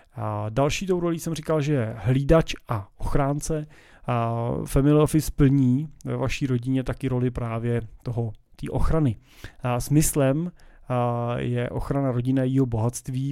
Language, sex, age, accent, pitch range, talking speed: Czech, male, 30-49, native, 120-145 Hz, 130 wpm